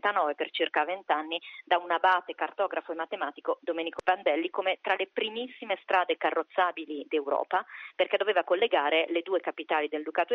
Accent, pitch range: native, 170-215 Hz